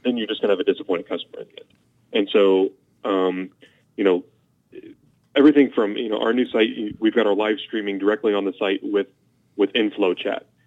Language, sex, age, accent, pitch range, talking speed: English, male, 30-49, American, 95-110 Hz, 210 wpm